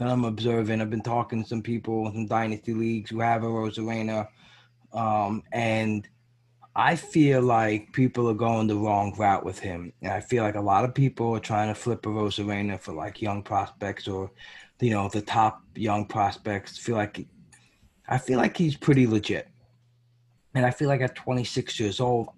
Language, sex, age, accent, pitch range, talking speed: English, male, 20-39, American, 110-125 Hz, 190 wpm